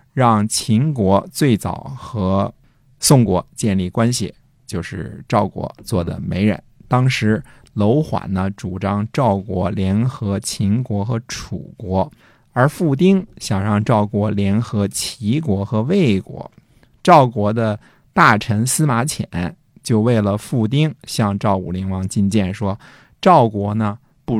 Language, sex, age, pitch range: Chinese, male, 50-69, 100-130 Hz